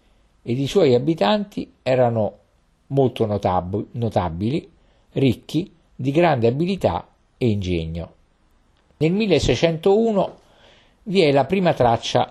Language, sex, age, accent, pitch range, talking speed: Italian, male, 50-69, native, 90-145 Hz, 95 wpm